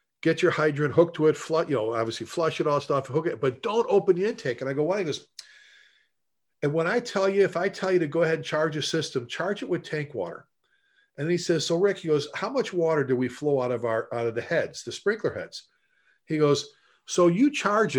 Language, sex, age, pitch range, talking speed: English, male, 50-69, 140-185 Hz, 255 wpm